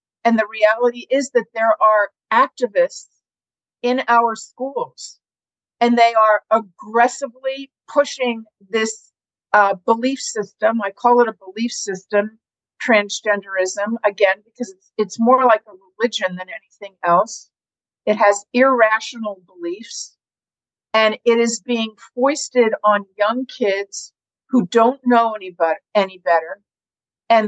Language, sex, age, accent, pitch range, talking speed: English, female, 50-69, American, 205-250 Hz, 125 wpm